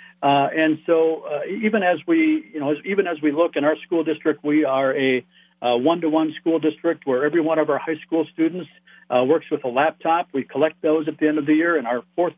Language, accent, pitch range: English, American, 140-175 Hz